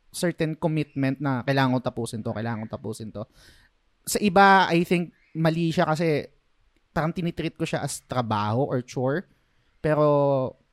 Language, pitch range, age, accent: Filipino, 125-165 Hz, 20-39, native